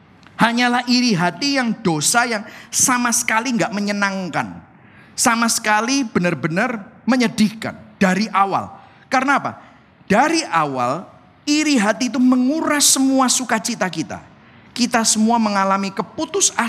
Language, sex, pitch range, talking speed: Indonesian, male, 160-250 Hz, 110 wpm